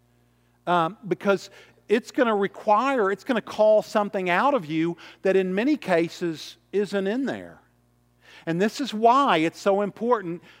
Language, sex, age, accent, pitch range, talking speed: English, male, 50-69, American, 180-240 Hz, 145 wpm